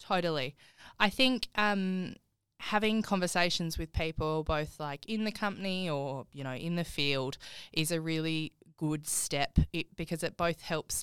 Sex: female